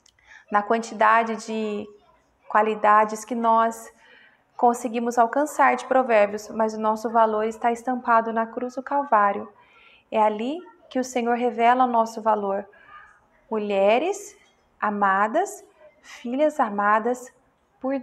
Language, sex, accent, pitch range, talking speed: Portuguese, female, Brazilian, 215-250 Hz, 115 wpm